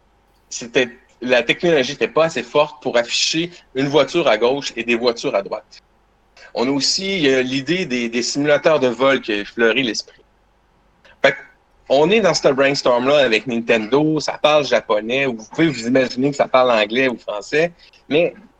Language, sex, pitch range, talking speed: French, male, 125-180 Hz, 170 wpm